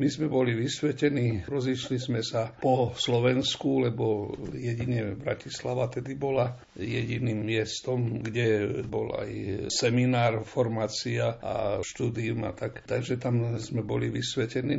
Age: 60-79